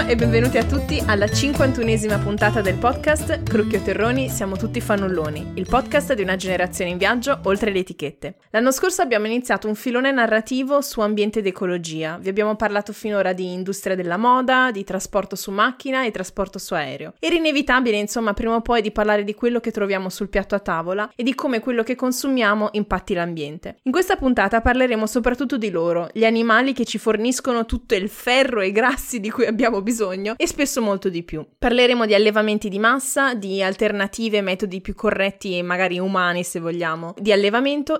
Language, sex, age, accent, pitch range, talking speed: Italian, female, 20-39, native, 190-245 Hz, 190 wpm